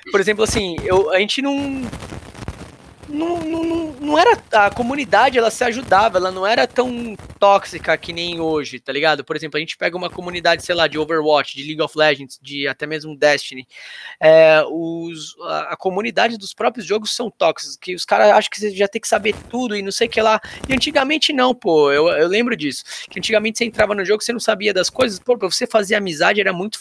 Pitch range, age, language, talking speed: 165-225 Hz, 20-39, Portuguese, 220 wpm